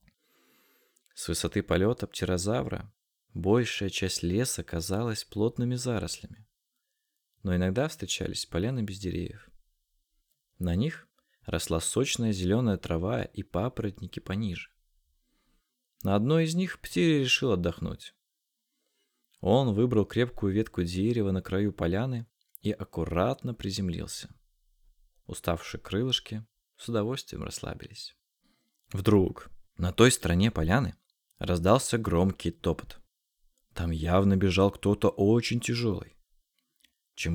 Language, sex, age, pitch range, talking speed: Russian, male, 20-39, 90-120 Hz, 100 wpm